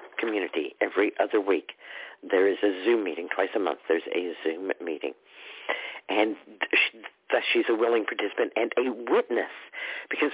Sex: male